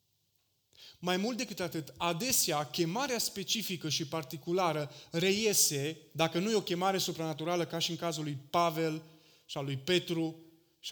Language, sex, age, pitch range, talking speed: Romanian, male, 30-49, 130-180 Hz, 150 wpm